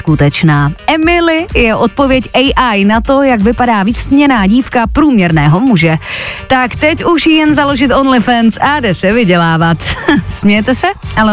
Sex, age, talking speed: female, 30-49, 140 wpm